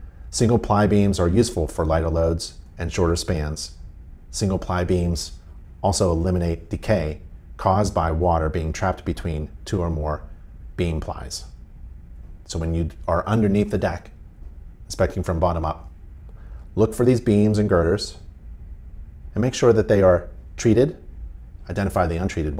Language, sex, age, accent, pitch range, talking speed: English, male, 40-59, American, 75-95 Hz, 140 wpm